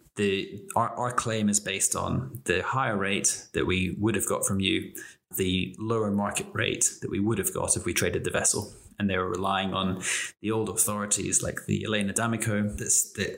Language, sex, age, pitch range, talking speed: English, male, 30-49, 100-115 Hz, 200 wpm